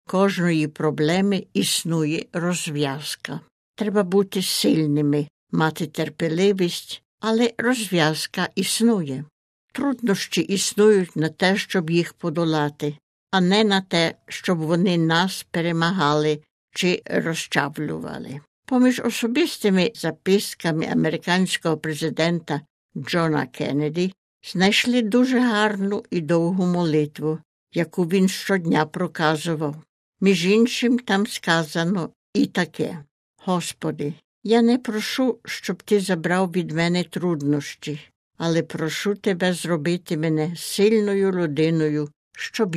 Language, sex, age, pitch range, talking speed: Ukrainian, female, 60-79, 155-200 Hz, 100 wpm